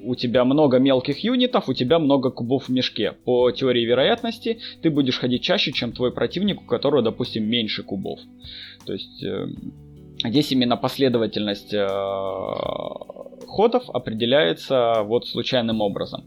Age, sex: 20-39, male